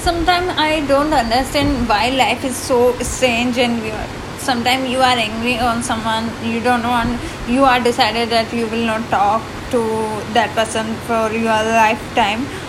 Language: Hindi